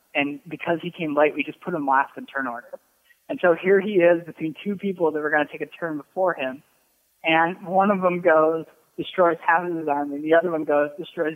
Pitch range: 135-165 Hz